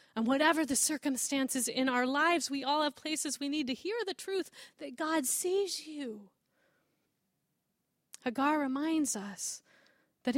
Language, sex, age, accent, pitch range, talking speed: English, female, 30-49, American, 225-345 Hz, 145 wpm